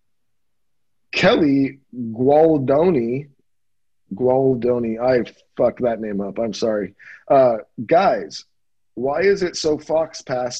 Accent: American